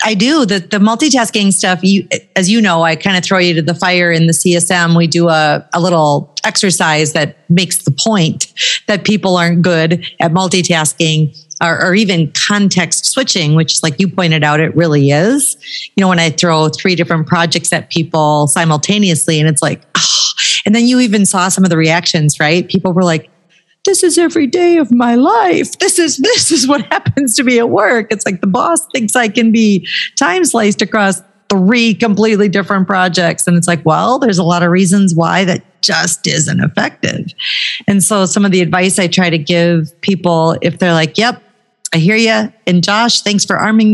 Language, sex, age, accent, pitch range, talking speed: English, female, 40-59, American, 170-220 Hz, 200 wpm